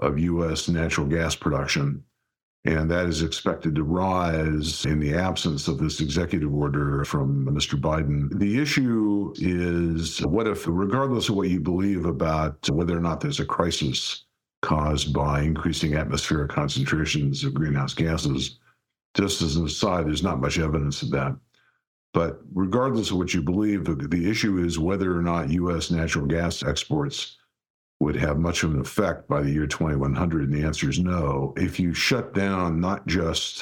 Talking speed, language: 165 wpm, English